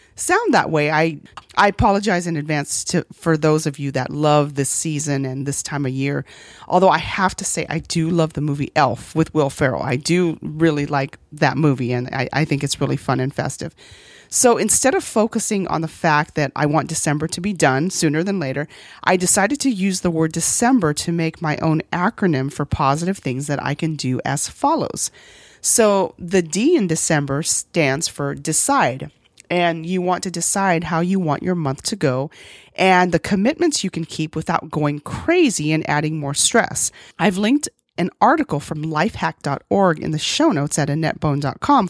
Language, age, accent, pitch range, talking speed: English, 40-59, American, 145-190 Hz, 190 wpm